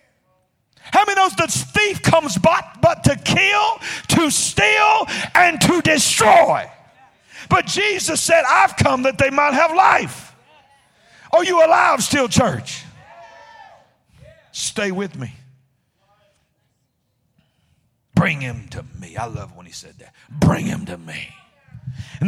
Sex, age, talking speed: male, 50-69, 130 wpm